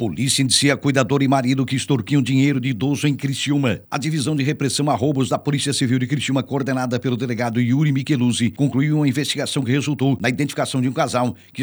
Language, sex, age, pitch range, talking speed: Portuguese, male, 60-79, 130-150 Hz, 200 wpm